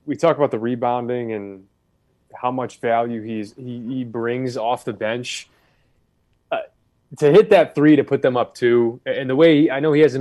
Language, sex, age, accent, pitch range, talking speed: English, male, 20-39, American, 115-140 Hz, 200 wpm